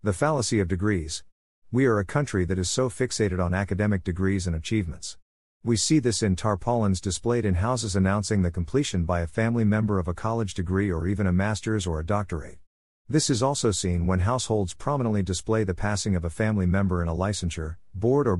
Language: English